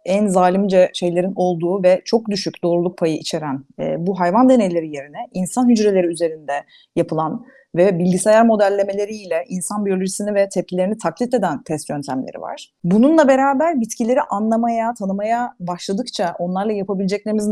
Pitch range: 170-245 Hz